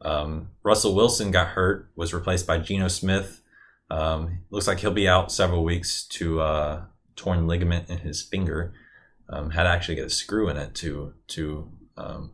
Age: 20-39